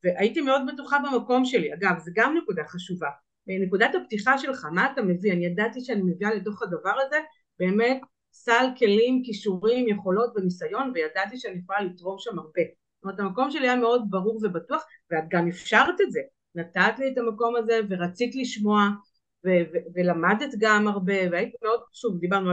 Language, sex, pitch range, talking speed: Hebrew, female, 180-235 Hz, 170 wpm